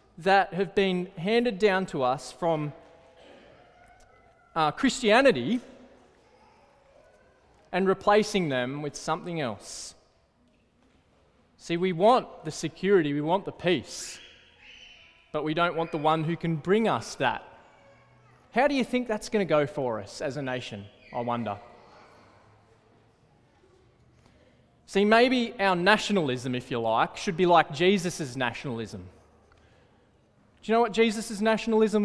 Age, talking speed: 20-39, 130 wpm